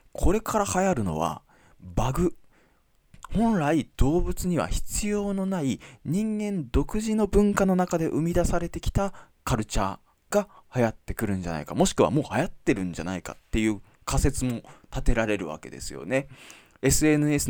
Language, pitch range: Japanese, 90-145 Hz